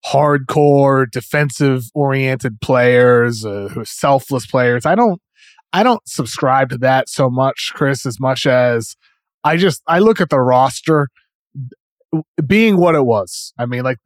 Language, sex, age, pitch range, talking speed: English, male, 20-39, 125-150 Hz, 145 wpm